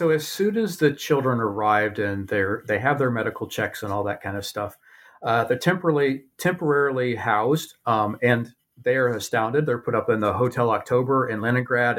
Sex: male